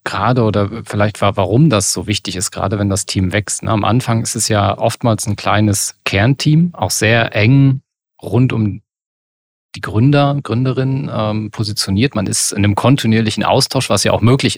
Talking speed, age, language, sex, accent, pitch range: 175 wpm, 40-59, German, male, German, 95-115 Hz